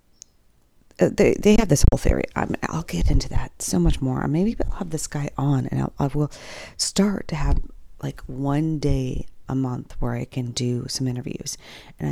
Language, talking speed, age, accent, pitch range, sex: English, 205 wpm, 40-59, American, 120-155 Hz, female